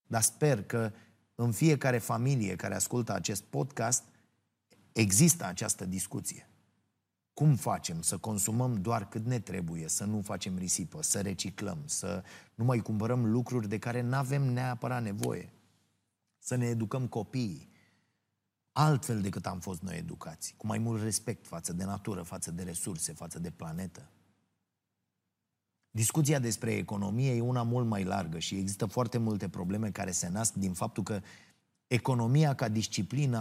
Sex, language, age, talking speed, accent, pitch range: male, Romanian, 30-49, 145 wpm, native, 100-130 Hz